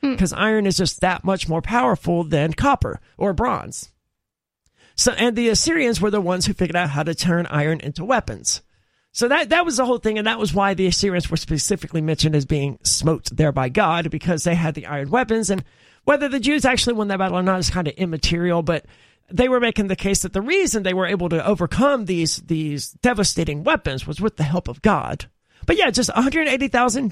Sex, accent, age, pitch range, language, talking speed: male, American, 40-59, 165-240 Hz, English, 215 wpm